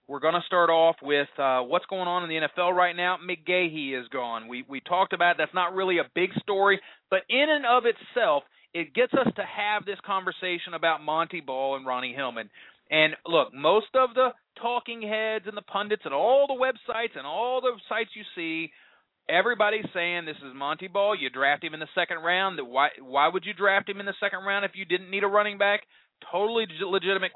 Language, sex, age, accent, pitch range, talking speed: English, male, 30-49, American, 155-210 Hz, 215 wpm